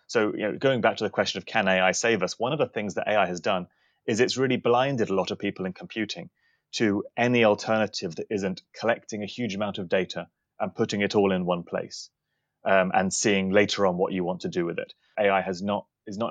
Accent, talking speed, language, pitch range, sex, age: British, 245 wpm, English, 95-120 Hz, male, 30-49